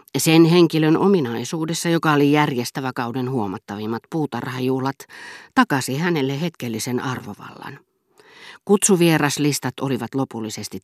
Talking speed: 90 wpm